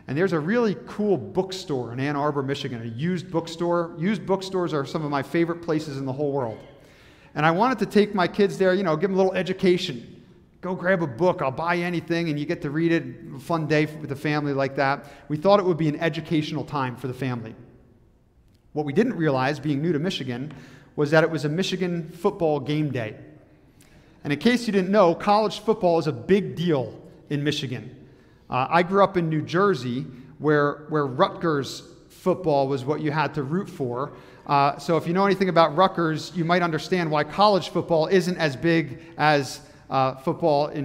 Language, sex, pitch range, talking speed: English, male, 145-180 Hz, 210 wpm